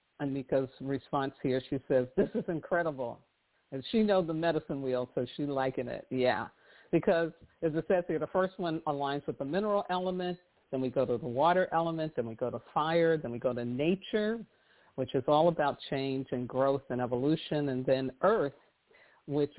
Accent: American